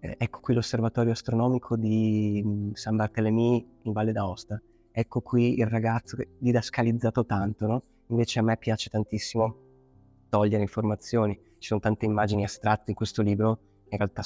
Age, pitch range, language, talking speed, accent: 20-39, 105-115 Hz, Italian, 155 wpm, native